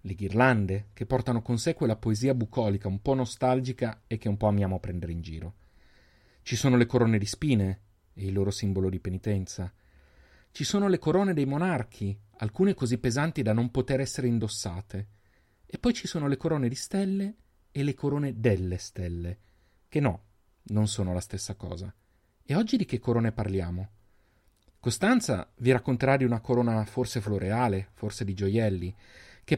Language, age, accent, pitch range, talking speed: Italian, 30-49, native, 100-130 Hz, 170 wpm